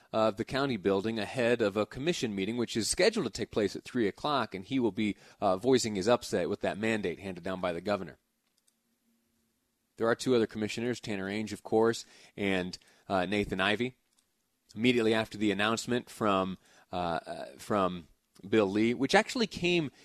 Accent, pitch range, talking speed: American, 105-140 Hz, 180 wpm